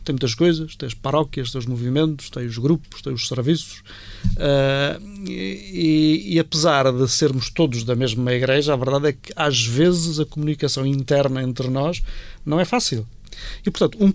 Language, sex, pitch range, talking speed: Portuguese, male, 120-155 Hz, 170 wpm